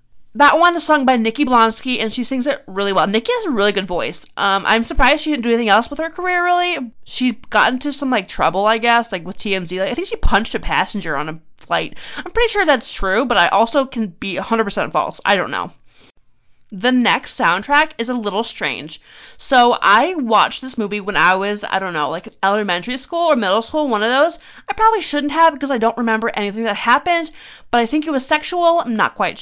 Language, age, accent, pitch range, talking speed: English, 30-49, American, 205-290 Hz, 230 wpm